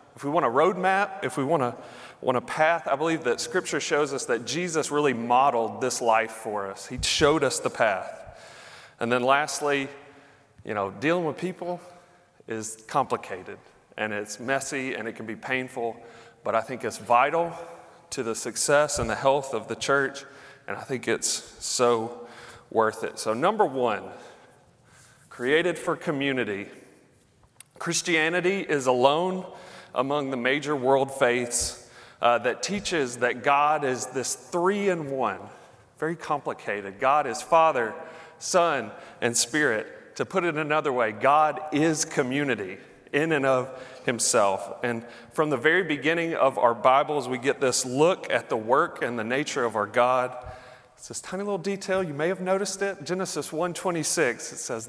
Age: 30-49